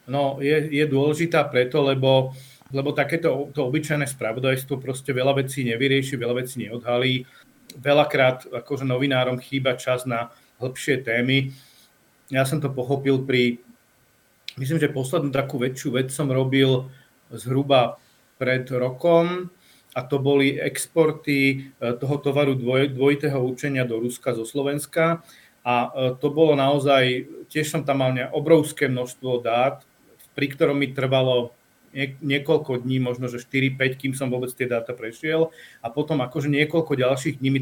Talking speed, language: 140 wpm, Slovak